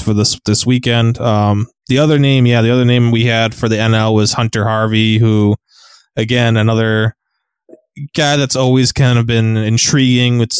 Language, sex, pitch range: English, male, 110-125 Hz